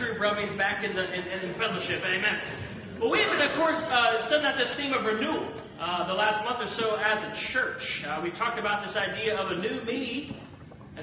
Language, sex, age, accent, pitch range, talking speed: English, male, 30-49, American, 175-245 Hz, 225 wpm